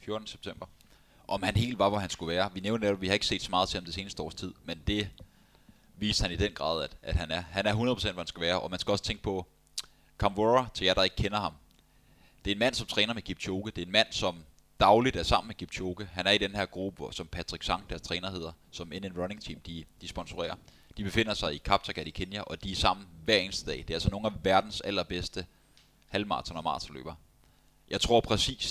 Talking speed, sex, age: 250 wpm, male, 20-39